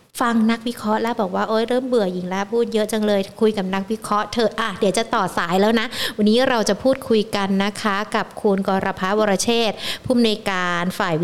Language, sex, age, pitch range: Thai, female, 60-79, 195-235 Hz